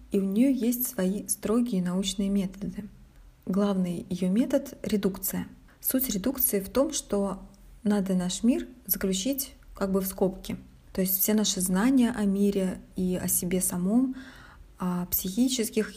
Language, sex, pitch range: Russian, female, 185-225 Hz